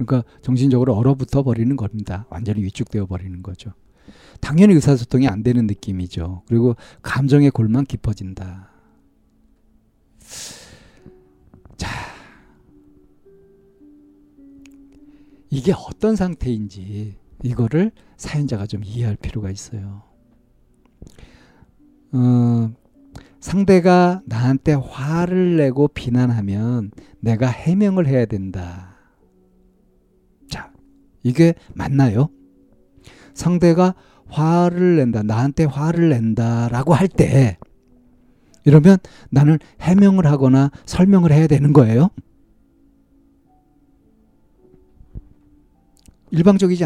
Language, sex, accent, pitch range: Korean, male, native, 100-165 Hz